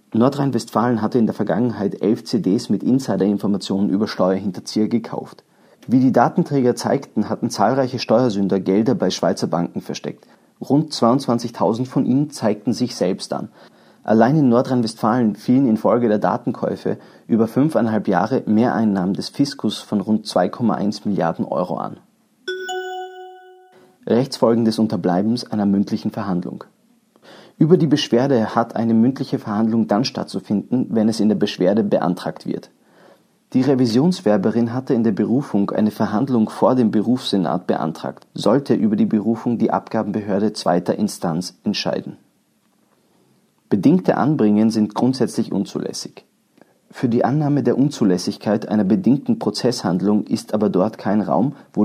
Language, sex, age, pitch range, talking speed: German, male, 30-49, 105-130 Hz, 130 wpm